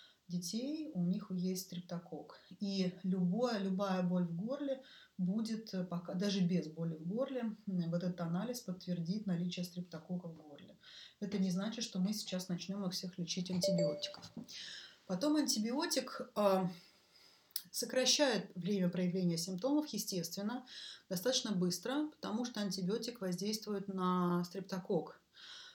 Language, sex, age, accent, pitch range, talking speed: Russian, female, 30-49, native, 180-220 Hz, 120 wpm